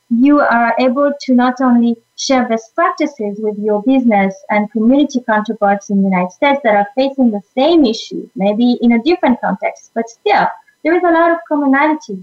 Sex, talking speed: female, 185 wpm